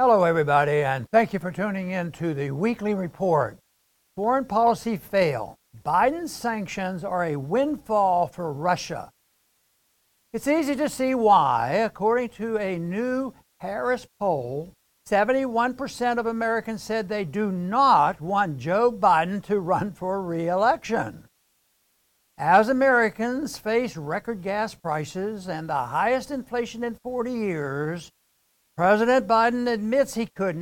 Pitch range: 180-235 Hz